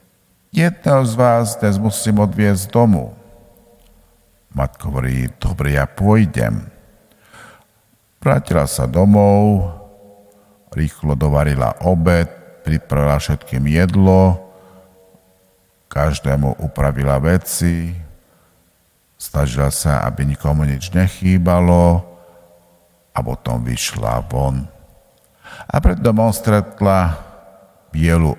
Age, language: 50-69, Slovak